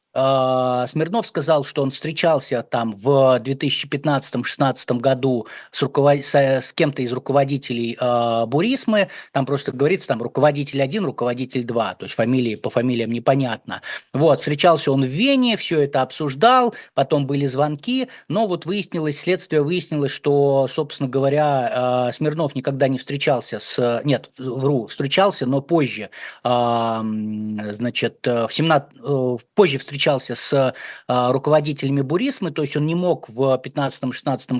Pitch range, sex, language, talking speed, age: 125-150 Hz, male, Russian, 135 wpm, 30-49